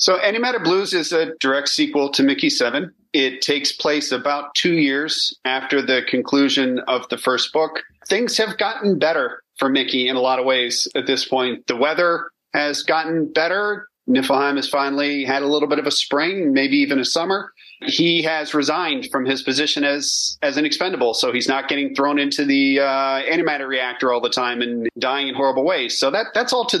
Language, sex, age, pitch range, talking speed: English, male, 40-59, 130-155 Hz, 200 wpm